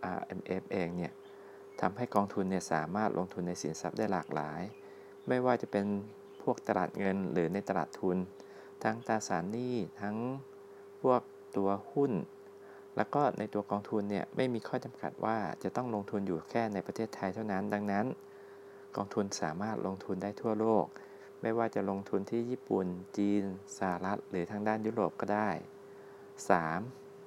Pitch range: 95-120 Hz